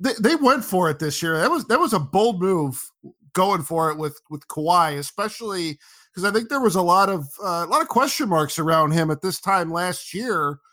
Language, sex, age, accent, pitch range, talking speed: English, male, 50-69, American, 155-205 Hz, 230 wpm